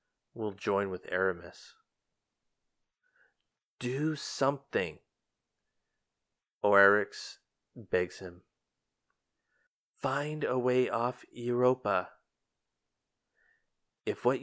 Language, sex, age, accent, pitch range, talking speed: English, male, 30-49, American, 100-120 Hz, 65 wpm